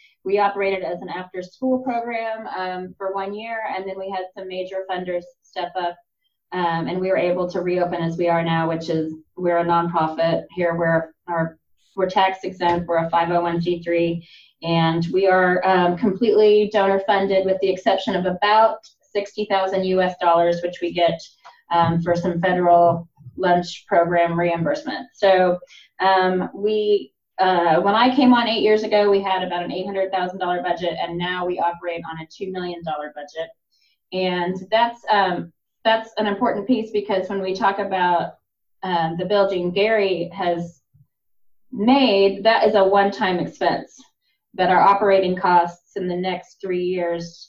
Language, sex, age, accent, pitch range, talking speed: English, female, 20-39, American, 170-200 Hz, 160 wpm